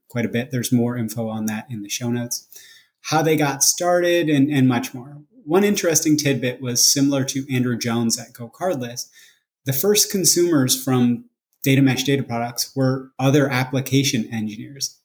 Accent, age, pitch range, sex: American, 30-49, 120-135 Hz, male